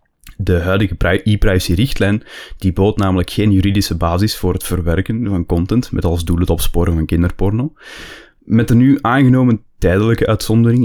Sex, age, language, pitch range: male, 20-39, Dutch, 90-110 Hz